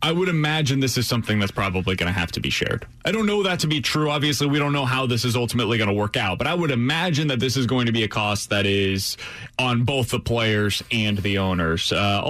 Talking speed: 270 wpm